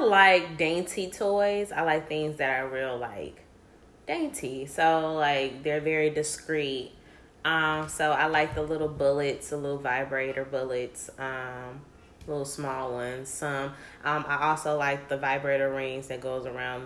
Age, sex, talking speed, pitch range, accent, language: 20-39, female, 155 wpm, 140-165 Hz, American, English